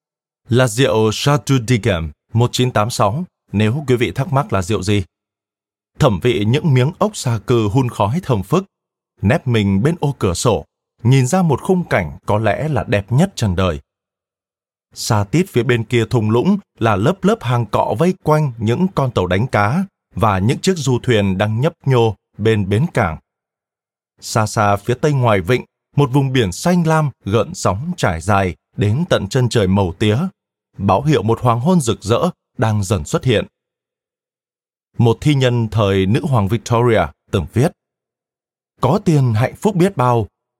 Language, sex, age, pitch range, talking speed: Vietnamese, male, 20-39, 105-140 Hz, 175 wpm